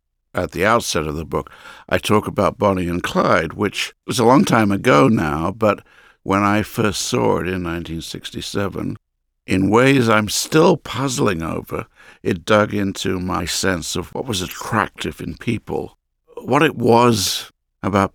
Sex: male